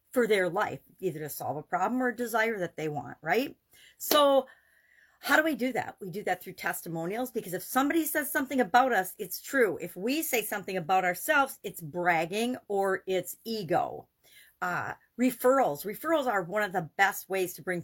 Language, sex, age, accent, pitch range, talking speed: English, female, 50-69, American, 180-235 Hz, 190 wpm